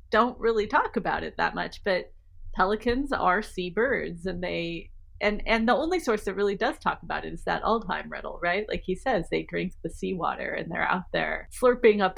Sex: female